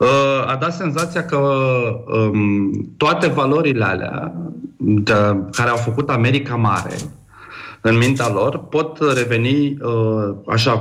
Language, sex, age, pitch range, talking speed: Romanian, male, 40-59, 105-130 Hz, 100 wpm